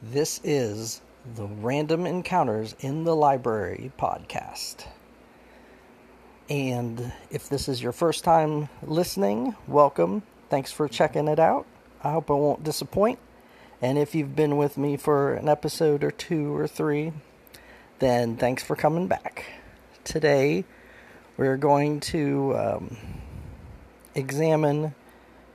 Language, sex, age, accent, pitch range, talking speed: English, male, 40-59, American, 125-155 Hz, 120 wpm